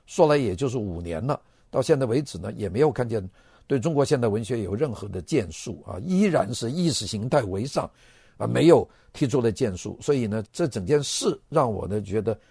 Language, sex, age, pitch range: Chinese, male, 50-69, 105-140 Hz